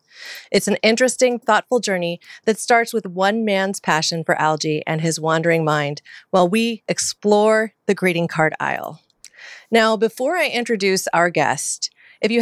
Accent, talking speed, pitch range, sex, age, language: American, 155 wpm, 175-235 Hz, female, 30-49, English